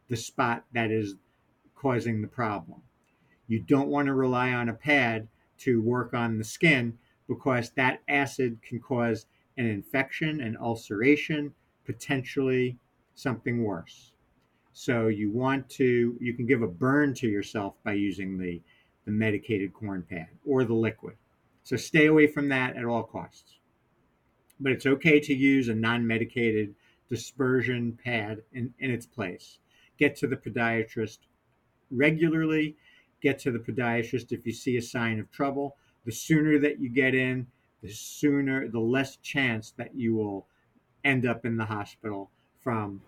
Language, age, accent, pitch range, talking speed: English, 50-69, American, 110-135 Hz, 155 wpm